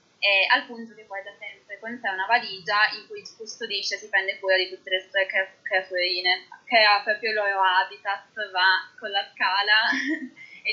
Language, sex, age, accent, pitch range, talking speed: Italian, female, 20-39, native, 190-245 Hz, 190 wpm